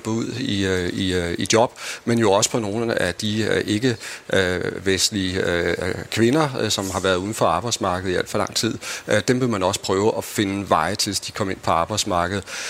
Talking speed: 215 wpm